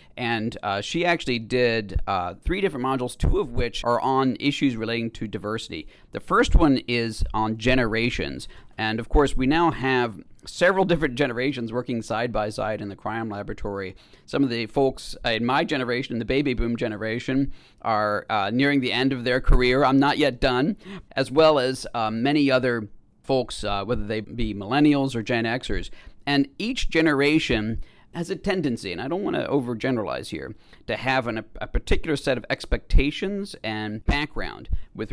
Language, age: English, 40-59